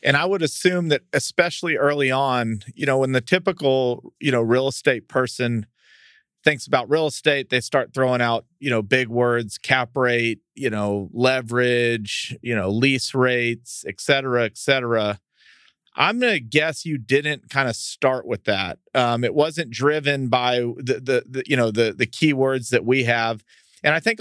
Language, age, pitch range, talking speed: English, 40-59, 125-150 Hz, 180 wpm